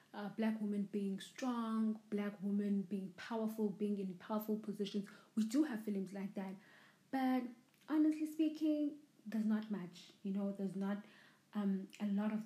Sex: female